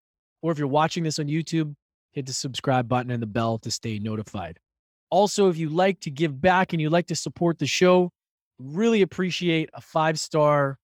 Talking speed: 195 wpm